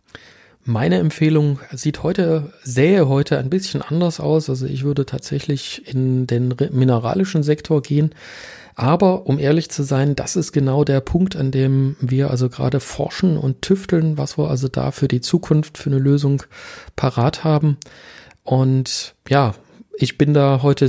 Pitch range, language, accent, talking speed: 125-145 Hz, German, German, 160 wpm